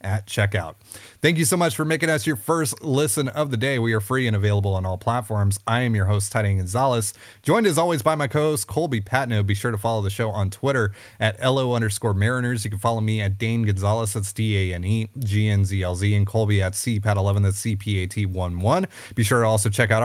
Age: 30-49